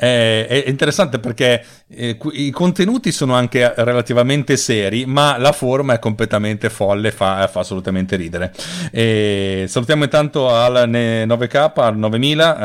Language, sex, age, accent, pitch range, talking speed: Italian, male, 40-59, native, 105-135 Hz, 135 wpm